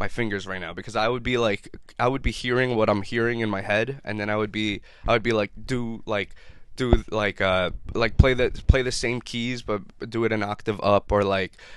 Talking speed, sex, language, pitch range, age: 245 wpm, male, English, 100-115 Hz, 20-39